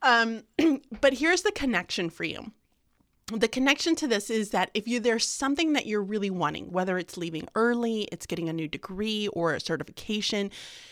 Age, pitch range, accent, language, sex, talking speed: 30-49, 180-230 Hz, American, English, female, 175 wpm